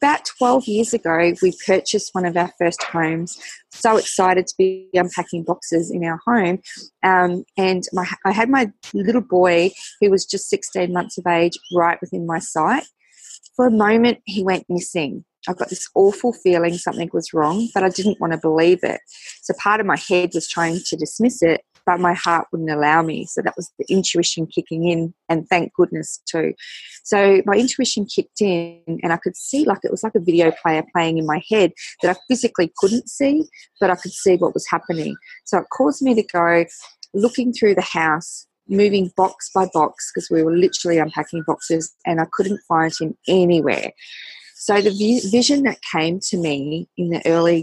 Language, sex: English, female